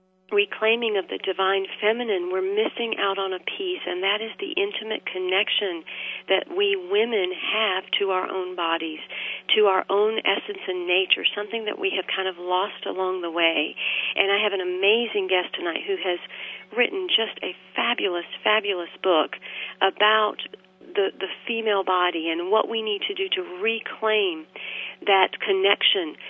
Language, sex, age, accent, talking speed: English, female, 40-59, American, 160 wpm